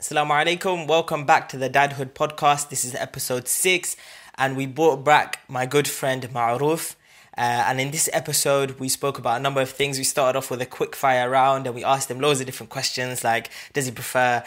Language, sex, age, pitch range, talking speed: English, male, 20-39, 125-150 Hz, 215 wpm